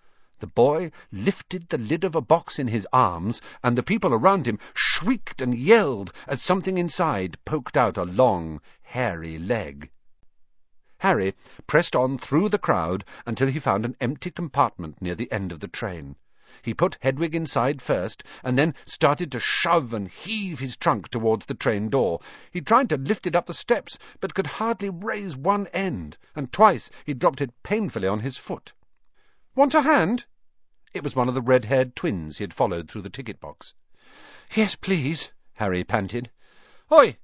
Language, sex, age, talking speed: English, male, 50-69, 175 wpm